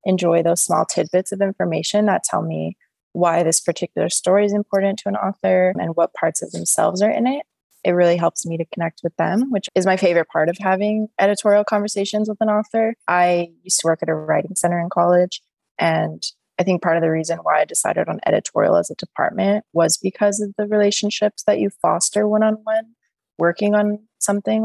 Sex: female